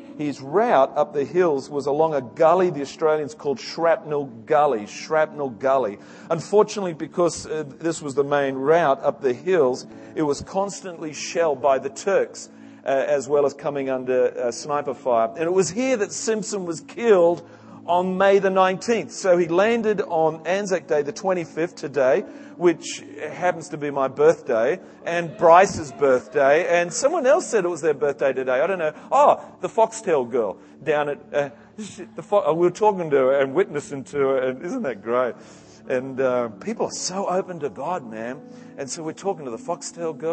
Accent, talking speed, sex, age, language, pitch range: Australian, 185 wpm, male, 40-59, English, 135-180 Hz